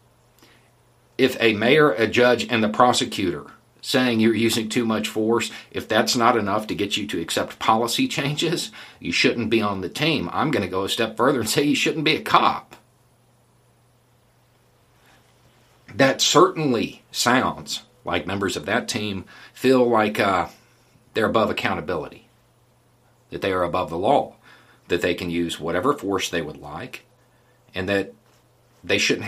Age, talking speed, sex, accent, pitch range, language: 50-69, 160 wpm, male, American, 110-125 Hz, English